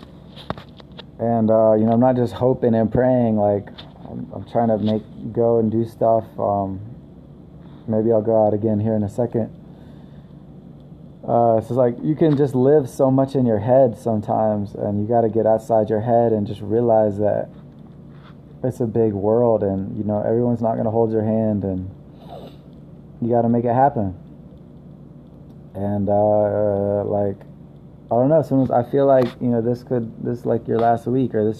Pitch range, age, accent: 110-125 Hz, 20-39, American